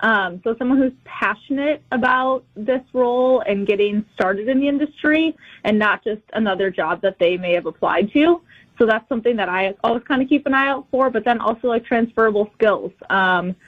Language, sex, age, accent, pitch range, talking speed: English, female, 20-39, American, 190-240 Hz, 200 wpm